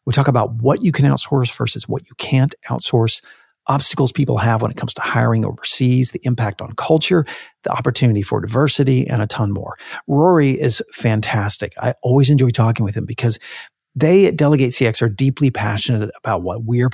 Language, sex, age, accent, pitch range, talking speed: English, male, 50-69, American, 115-140 Hz, 190 wpm